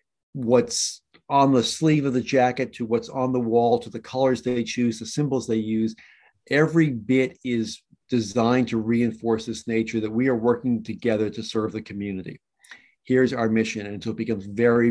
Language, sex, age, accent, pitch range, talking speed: English, male, 50-69, American, 110-140 Hz, 185 wpm